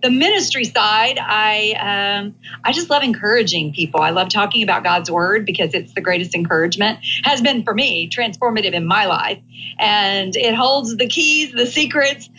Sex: female